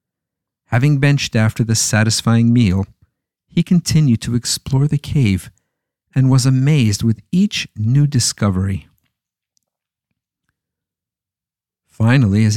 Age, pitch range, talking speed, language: 50-69, 100-135 Hz, 100 wpm, English